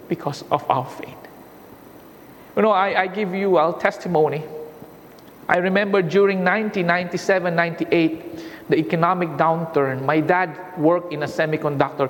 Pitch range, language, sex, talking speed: 160-210 Hz, English, male, 130 wpm